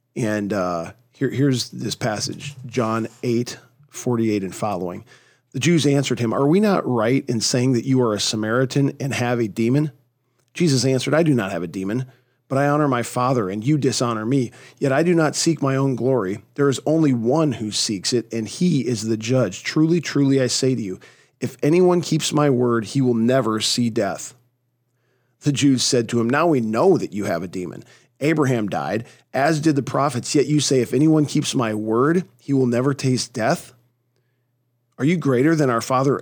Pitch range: 120-140 Hz